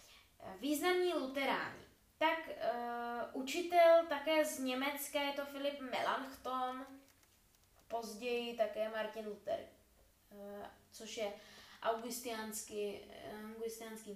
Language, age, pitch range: Czech, 20-39, 195-260 Hz